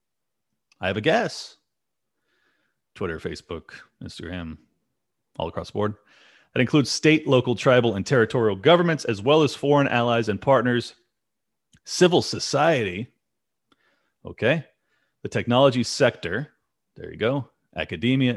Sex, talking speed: male, 120 wpm